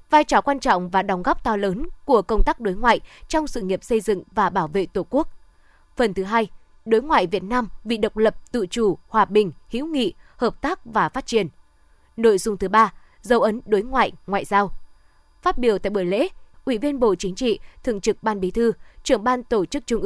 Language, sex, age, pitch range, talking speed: Vietnamese, female, 20-39, 200-260 Hz, 225 wpm